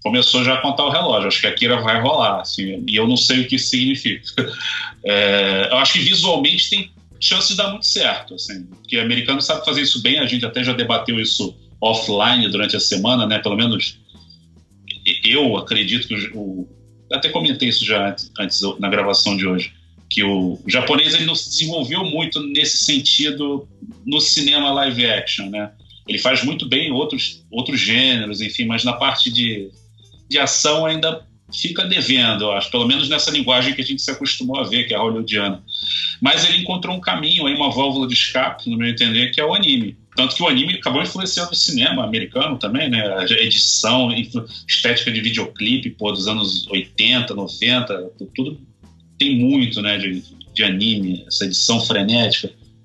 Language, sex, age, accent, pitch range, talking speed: Portuguese, male, 40-59, Brazilian, 100-140 Hz, 185 wpm